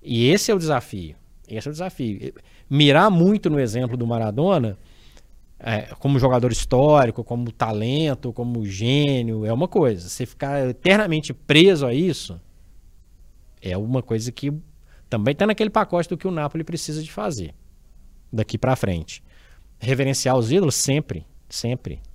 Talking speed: 150 wpm